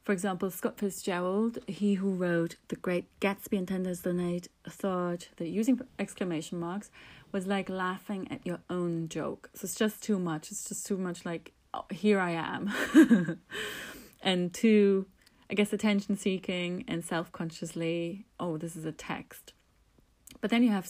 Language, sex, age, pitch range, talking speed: English, female, 30-49, 175-210 Hz, 160 wpm